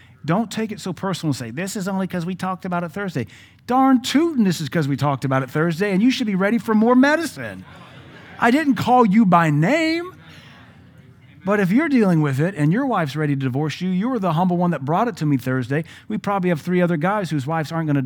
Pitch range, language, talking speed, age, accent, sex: 130-195 Hz, English, 250 wpm, 40-59, American, male